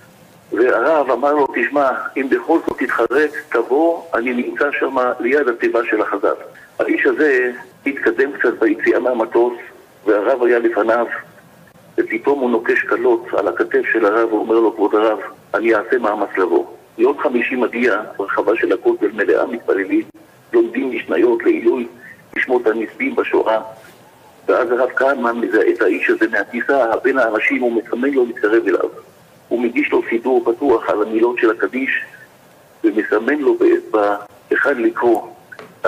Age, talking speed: 60-79, 140 wpm